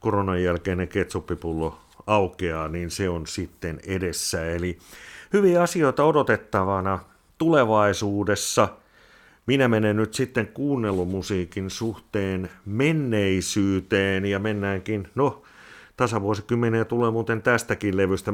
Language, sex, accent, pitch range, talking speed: Finnish, male, native, 95-110 Hz, 95 wpm